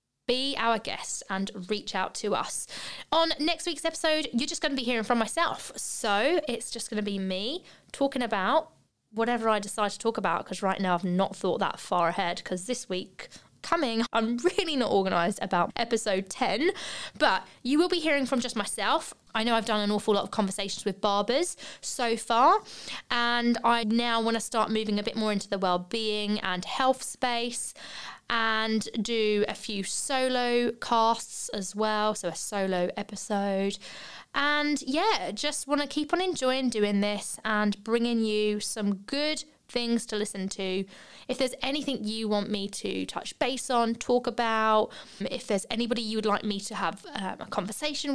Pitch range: 200-255 Hz